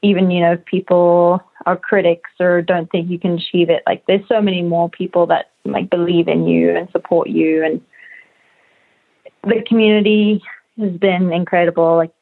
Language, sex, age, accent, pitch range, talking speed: English, female, 20-39, American, 175-205 Hz, 170 wpm